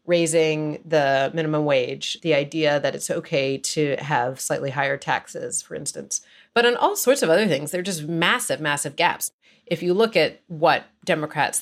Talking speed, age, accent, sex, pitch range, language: 180 wpm, 30-49, American, female, 145-175 Hz, English